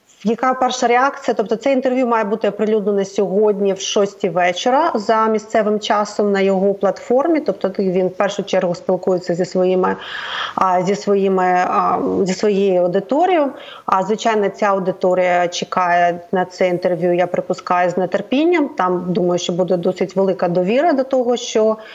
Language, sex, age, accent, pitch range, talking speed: Ukrainian, female, 30-49, native, 185-225 Hz, 145 wpm